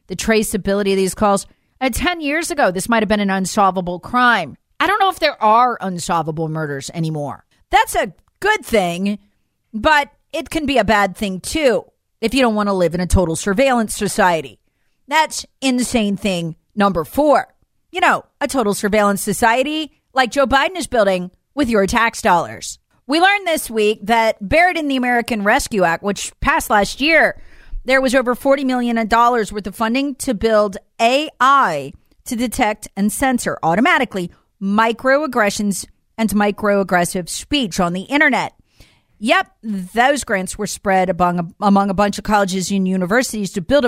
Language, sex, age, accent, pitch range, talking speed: English, female, 40-59, American, 200-275 Hz, 165 wpm